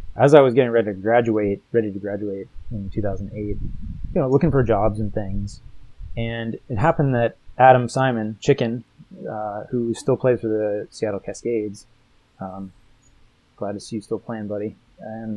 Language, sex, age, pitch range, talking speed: English, male, 20-39, 105-125 Hz, 170 wpm